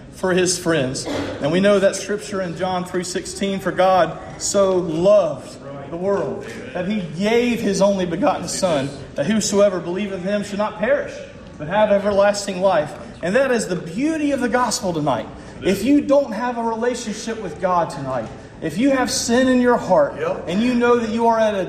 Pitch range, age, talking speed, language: 185-245 Hz, 40-59, 190 wpm, English